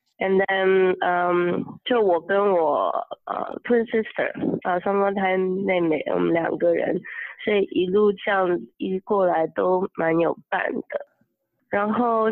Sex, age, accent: female, 20-39, Chinese